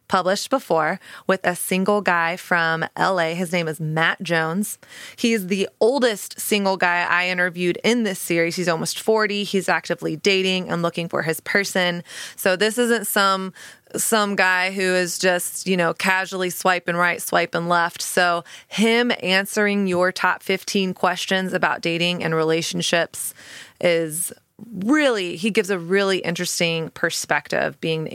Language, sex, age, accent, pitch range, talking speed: English, female, 20-39, American, 170-200 Hz, 155 wpm